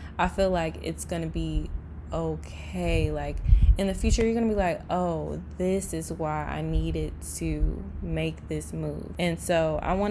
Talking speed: 170 wpm